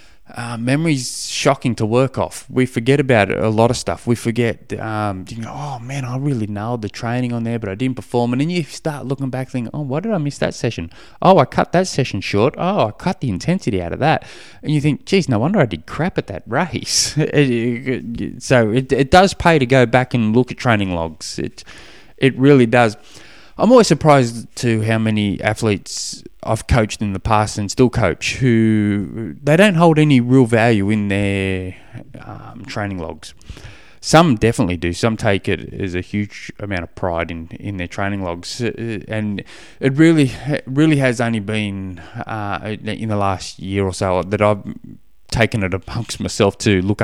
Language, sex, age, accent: English, male, 20-39, Australian